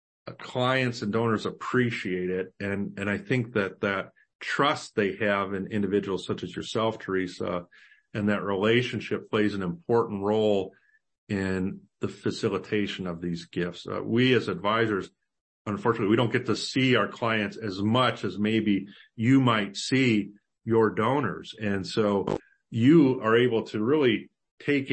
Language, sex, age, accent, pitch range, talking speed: English, male, 50-69, American, 95-110 Hz, 150 wpm